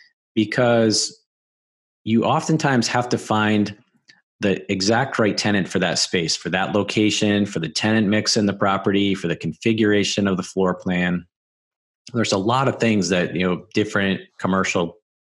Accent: American